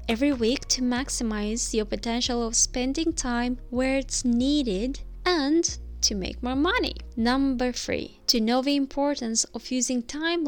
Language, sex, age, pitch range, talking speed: English, female, 20-39, 230-285 Hz, 150 wpm